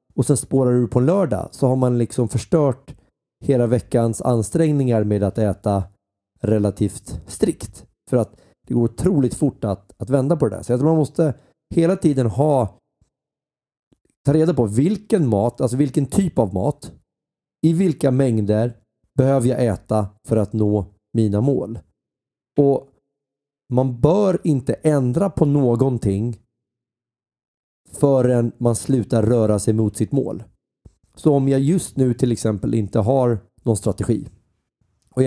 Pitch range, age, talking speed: 110-140 Hz, 30-49, 145 wpm